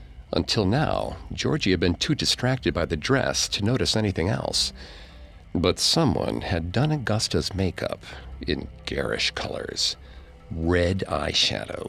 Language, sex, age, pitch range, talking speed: English, male, 50-69, 85-115 Hz, 125 wpm